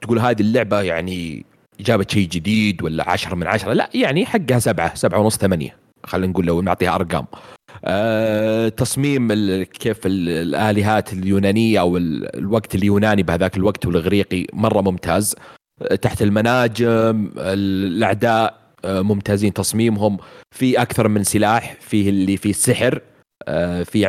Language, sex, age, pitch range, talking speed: Arabic, male, 30-49, 95-115 Hz, 135 wpm